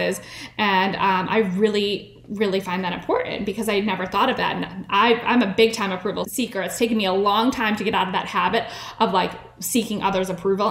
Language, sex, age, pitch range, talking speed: English, female, 10-29, 200-245 Hz, 220 wpm